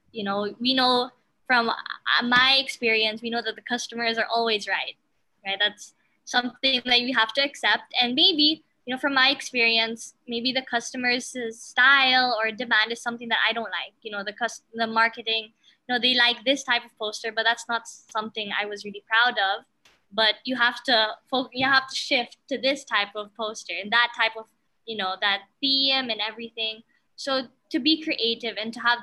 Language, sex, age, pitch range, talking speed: English, female, 20-39, 215-255 Hz, 200 wpm